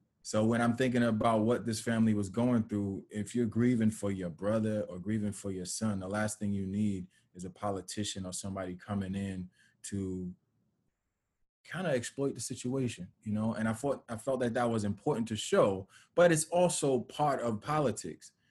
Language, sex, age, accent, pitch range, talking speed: English, male, 20-39, American, 100-120 Hz, 190 wpm